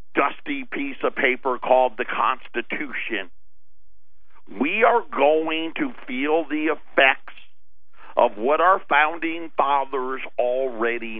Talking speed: 105 wpm